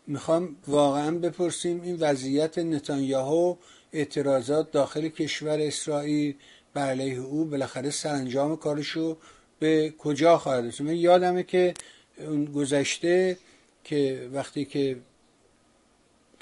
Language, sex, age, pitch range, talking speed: Persian, male, 50-69, 135-160 Hz, 90 wpm